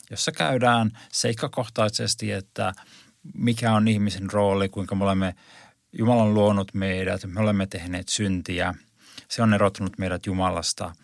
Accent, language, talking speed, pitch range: native, Finnish, 125 wpm, 95-115 Hz